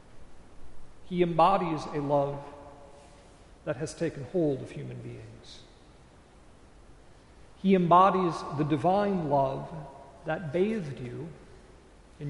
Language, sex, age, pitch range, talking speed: English, male, 60-79, 140-195 Hz, 100 wpm